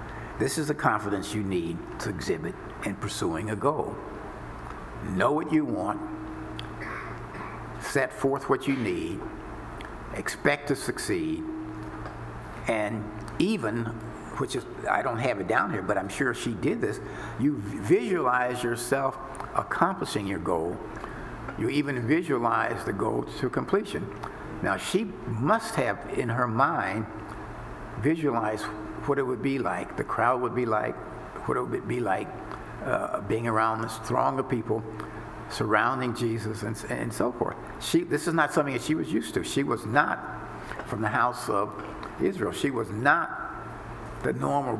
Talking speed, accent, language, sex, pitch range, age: 150 wpm, American, English, male, 110-145 Hz, 60-79